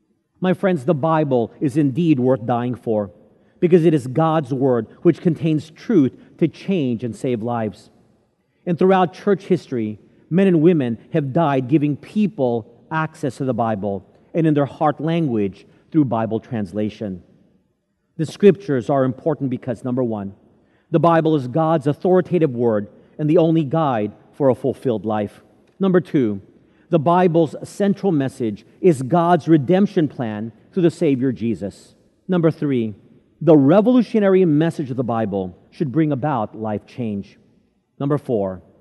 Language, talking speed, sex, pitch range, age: English, 145 wpm, male, 115-170 Hz, 40-59